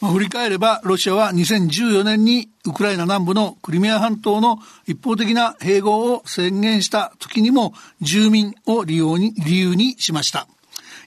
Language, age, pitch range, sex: Japanese, 60-79, 180-220 Hz, male